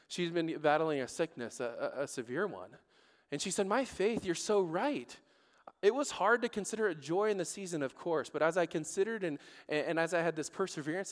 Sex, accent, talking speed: male, American, 215 wpm